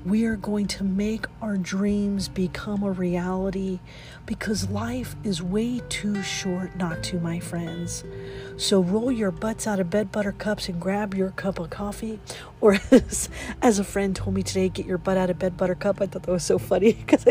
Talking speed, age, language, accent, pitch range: 195 wpm, 40-59, English, American, 180-225 Hz